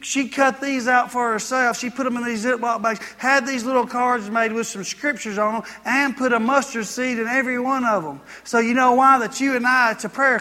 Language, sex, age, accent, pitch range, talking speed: English, male, 30-49, American, 210-250 Hz, 255 wpm